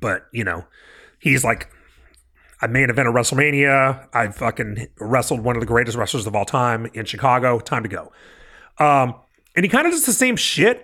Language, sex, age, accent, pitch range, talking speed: English, male, 30-49, American, 130-165 Hz, 200 wpm